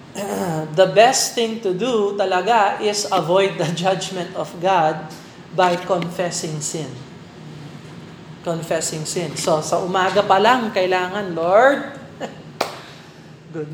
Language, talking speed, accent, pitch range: Filipino, 110 wpm, native, 175-210 Hz